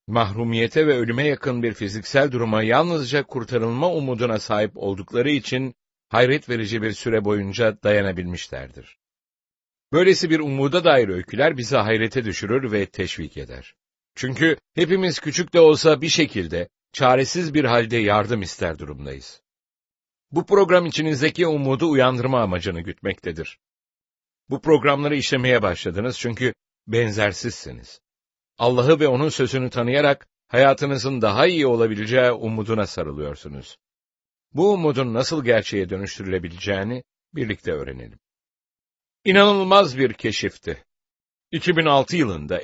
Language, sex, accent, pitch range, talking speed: English, male, Turkish, 105-150 Hz, 110 wpm